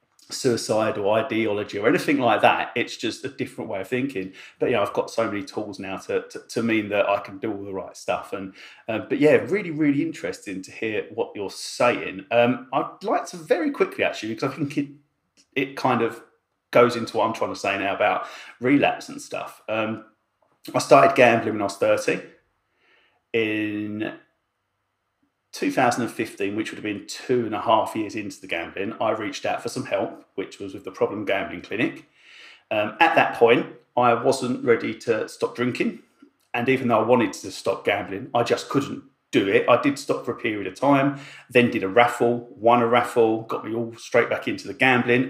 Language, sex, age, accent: English, male, 30-49, British